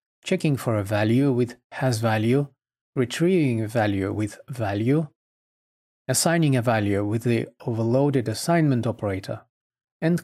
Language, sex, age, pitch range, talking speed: English, male, 40-59, 110-140 Hz, 115 wpm